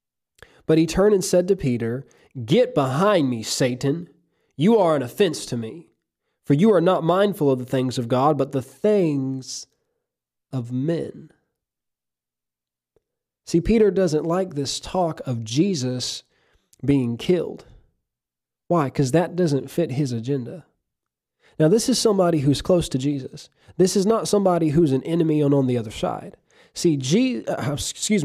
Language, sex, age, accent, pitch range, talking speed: English, male, 20-39, American, 130-175 Hz, 155 wpm